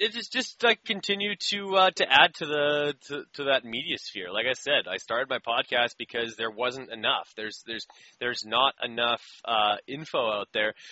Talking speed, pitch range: 200 wpm, 120-145 Hz